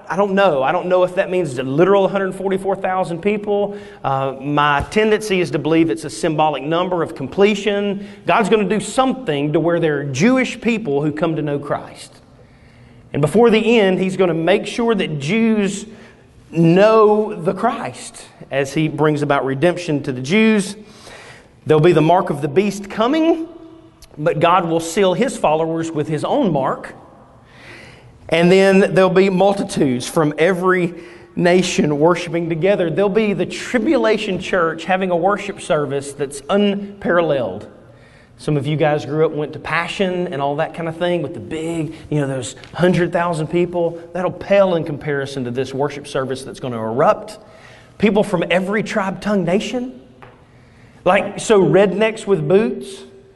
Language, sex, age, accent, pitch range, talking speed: English, male, 40-59, American, 150-200 Hz, 170 wpm